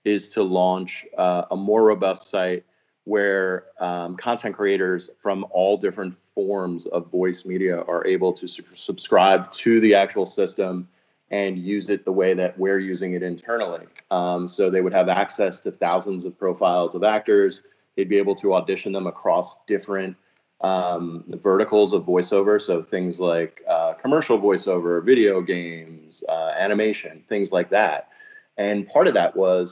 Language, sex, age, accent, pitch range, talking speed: English, male, 30-49, American, 90-110 Hz, 160 wpm